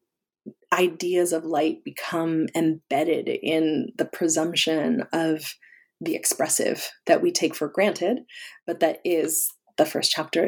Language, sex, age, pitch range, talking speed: English, female, 30-49, 155-180 Hz, 125 wpm